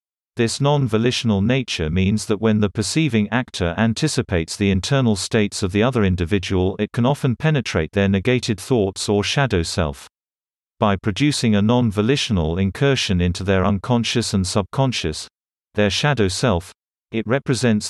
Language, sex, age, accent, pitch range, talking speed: English, male, 40-59, British, 95-120 Hz, 140 wpm